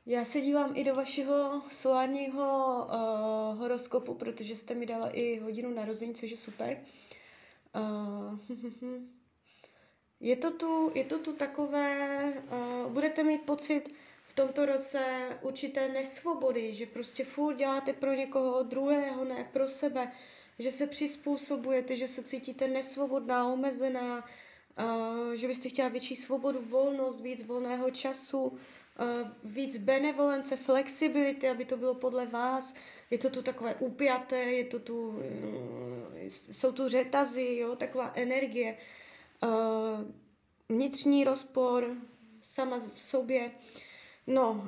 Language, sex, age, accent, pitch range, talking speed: Czech, female, 20-39, native, 240-280 Hz, 115 wpm